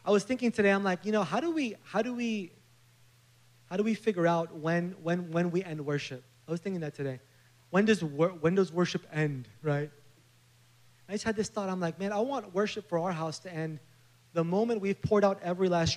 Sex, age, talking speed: male, 30-49, 225 wpm